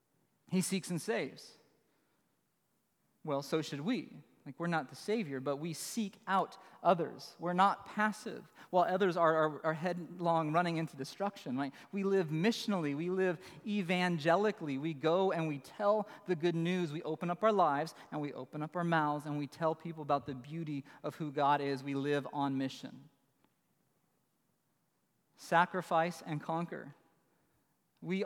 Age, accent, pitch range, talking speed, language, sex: 40-59, American, 145-175 Hz, 160 wpm, English, male